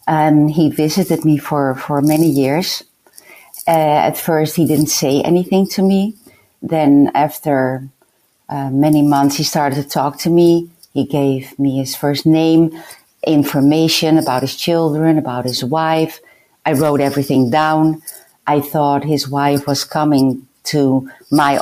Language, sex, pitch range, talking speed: English, female, 140-170 Hz, 145 wpm